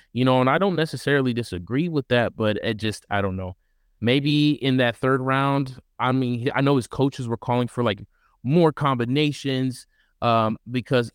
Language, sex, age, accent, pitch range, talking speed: English, male, 20-39, American, 110-130 Hz, 185 wpm